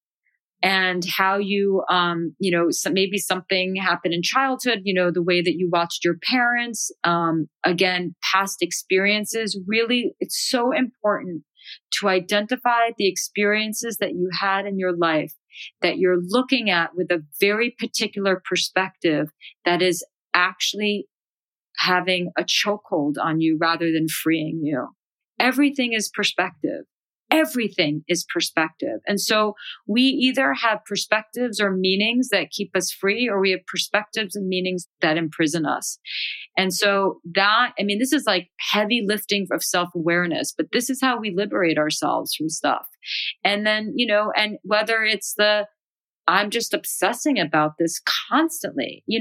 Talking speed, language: 150 wpm, English